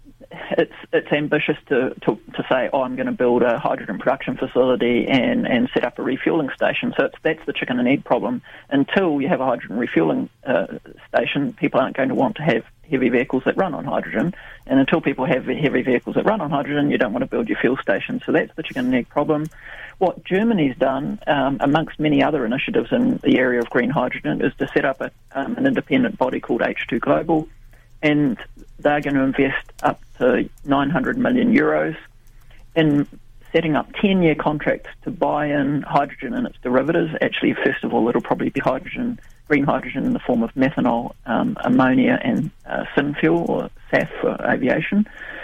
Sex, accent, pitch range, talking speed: male, Australian, 130-185 Hz, 195 wpm